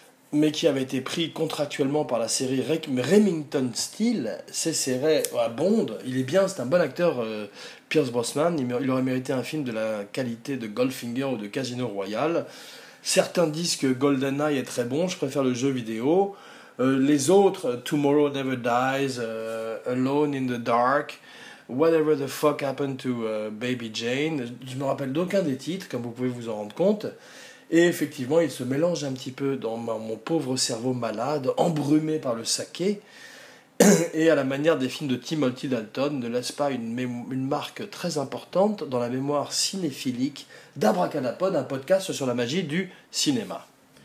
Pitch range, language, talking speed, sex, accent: 125-160 Hz, French, 175 wpm, male, French